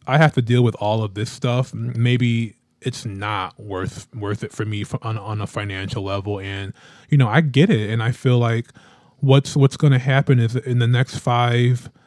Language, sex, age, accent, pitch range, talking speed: English, male, 20-39, American, 115-135 Hz, 220 wpm